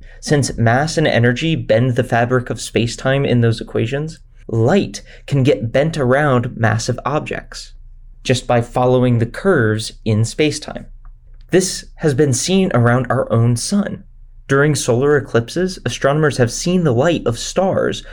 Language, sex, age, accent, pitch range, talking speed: English, male, 20-39, American, 115-145 Hz, 145 wpm